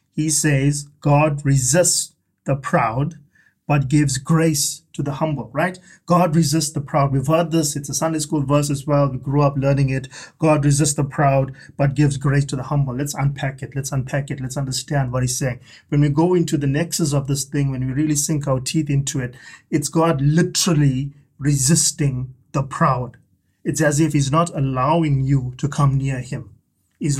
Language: English